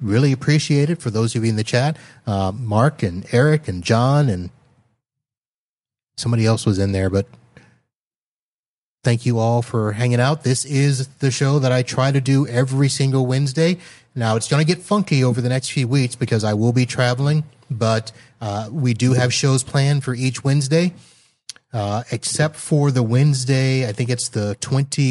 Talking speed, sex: 180 wpm, male